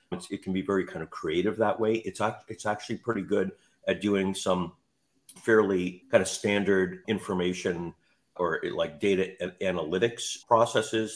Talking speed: 155 wpm